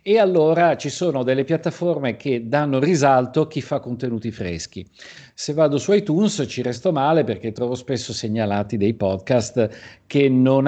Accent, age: native, 50-69